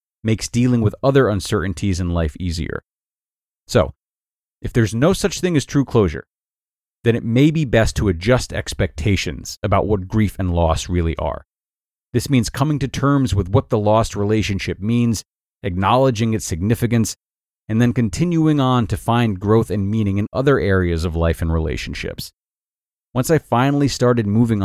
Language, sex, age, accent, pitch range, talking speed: English, male, 30-49, American, 95-130 Hz, 165 wpm